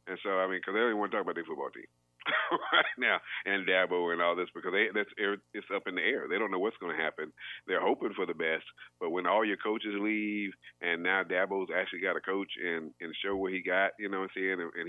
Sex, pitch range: male, 85-95 Hz